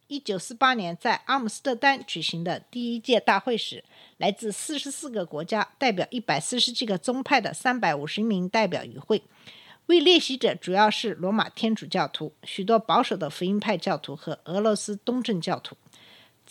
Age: 50-69